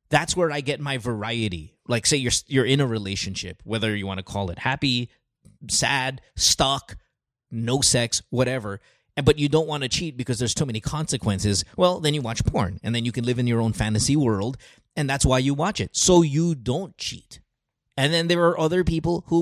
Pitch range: 110-150 Hz